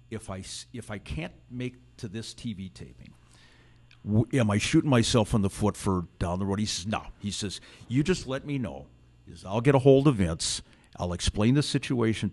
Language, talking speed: English, 205 wpm